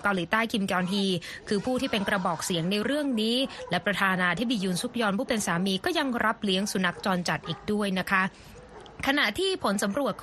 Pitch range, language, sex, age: 190-245 Hz, Thai, female, 20-39